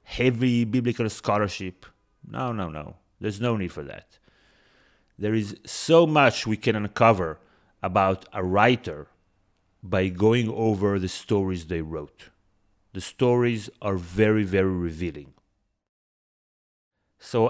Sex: male